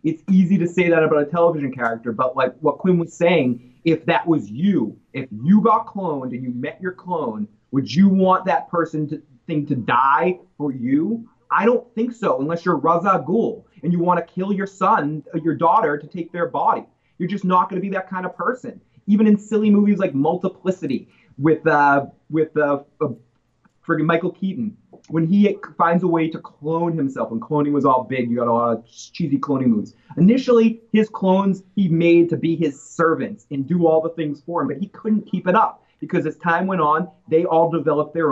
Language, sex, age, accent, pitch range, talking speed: English, male, 30-49, American, 145-190 Hz, 215 wpm